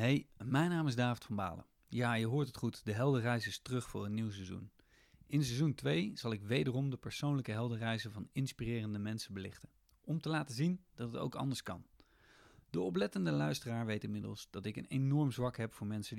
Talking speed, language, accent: 205 wpm, Dutch, Dutch